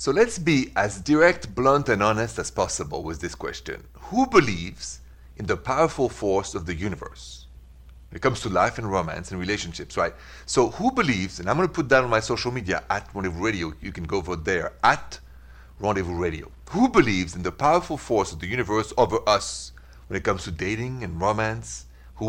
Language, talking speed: English, 200 wpm